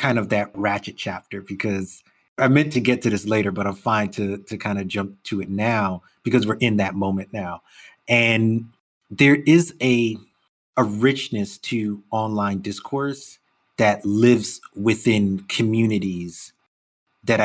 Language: English